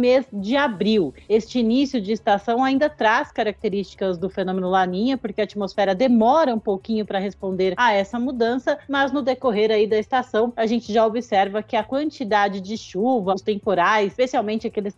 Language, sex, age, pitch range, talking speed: Portuguese, female, 40-59, 200-255 Hz, 170 wpm